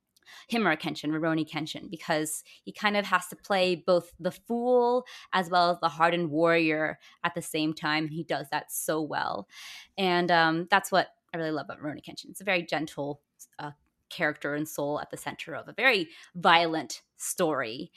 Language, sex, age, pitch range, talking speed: English, female, 20-39, 155-195 Hz, 185 wpm